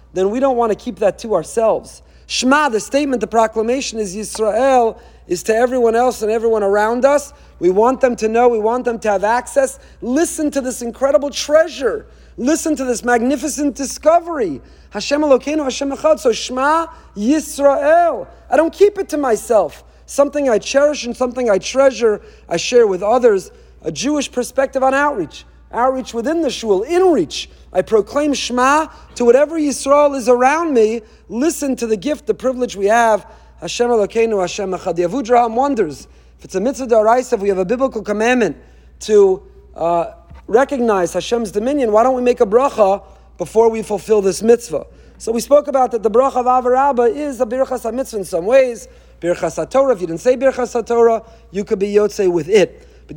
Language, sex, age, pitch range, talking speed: English, male, 30-49, 220-285 Hz, 180 wpm